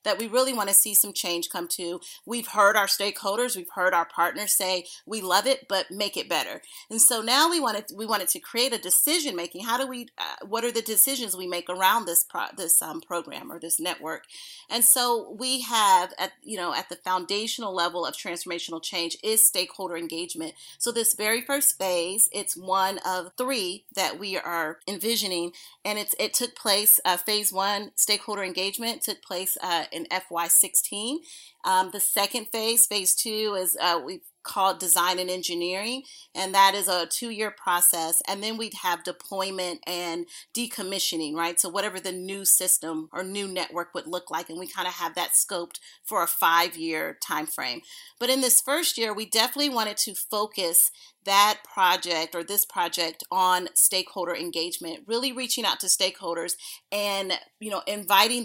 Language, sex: English, female